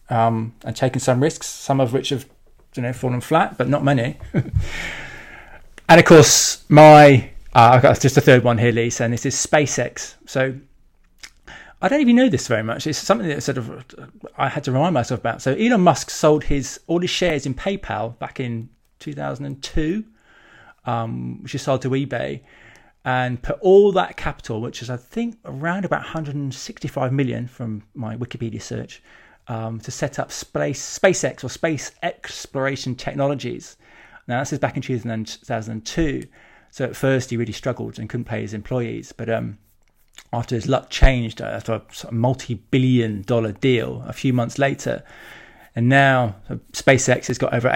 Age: 20-39